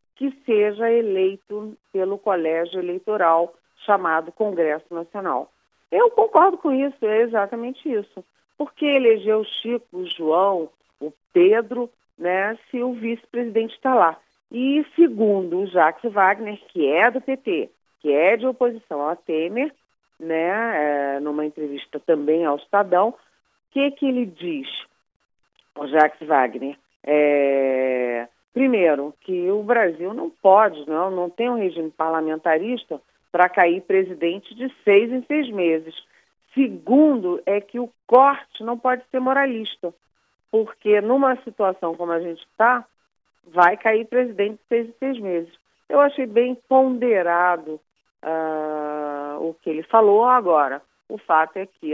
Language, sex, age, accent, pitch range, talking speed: Portuguese, female, 40-59, Brazilian, 160-240 Hz, 135 wpm